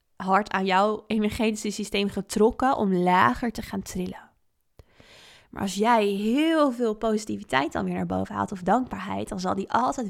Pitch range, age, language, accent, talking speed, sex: 190-220 Hz, 20-39, Dutch, Dutch, 165 wpm, female